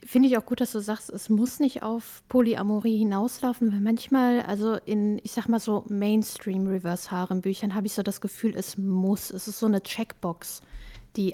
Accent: German